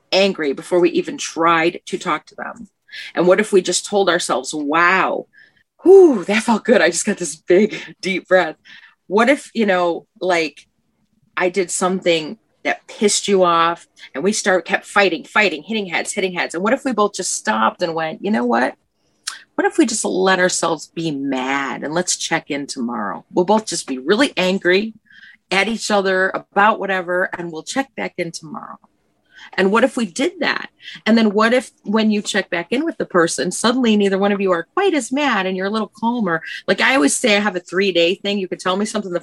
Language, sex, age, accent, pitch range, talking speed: English, female, 40-59, American, 170-215 Hz, 215 wpm